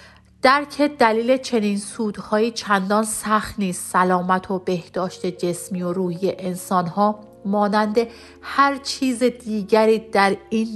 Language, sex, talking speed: Persian, female, 115 wpm